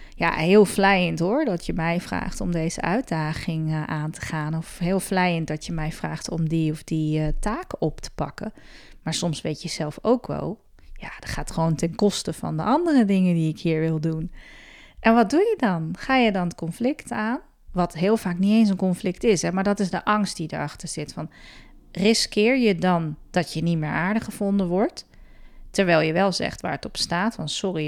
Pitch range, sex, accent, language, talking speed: 160-205 Hz, female, Dutch, Dutch, 210 wpm